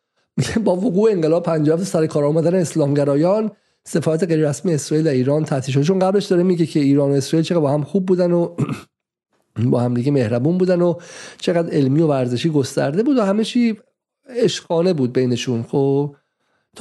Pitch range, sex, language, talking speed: 145-185 Hz, male, Persian, 175 wpm